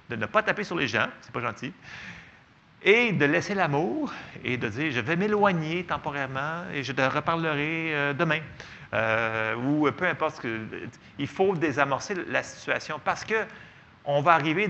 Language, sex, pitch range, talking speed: French, male, 130-185 Hz, 165 wpm